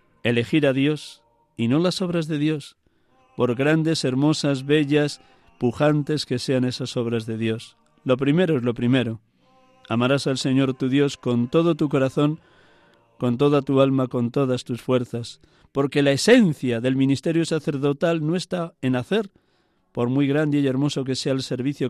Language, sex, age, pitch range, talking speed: Spanish, male, 50-69, 120-150 Hz, 165 wpm